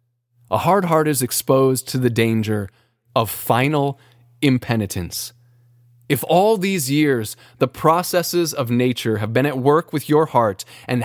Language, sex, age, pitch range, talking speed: English, male, 20-39, 125-185 Hz, 145 wpm